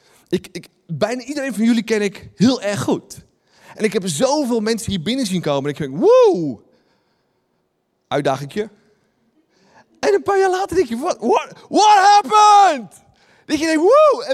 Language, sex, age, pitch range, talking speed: Dutch, male, 30-49, 165-235 Hz, 165 wpm